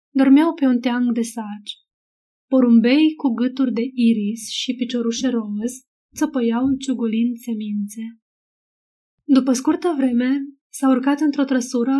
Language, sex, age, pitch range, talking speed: Romanian, female, 20-39, 235-270 Hz, 120 wpm